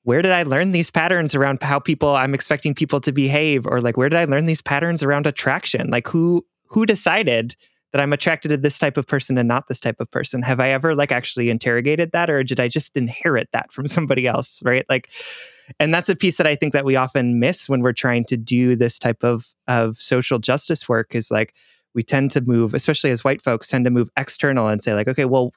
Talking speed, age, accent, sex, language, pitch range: 240 wpm, 20-39, American, male, English, 120-155 Hz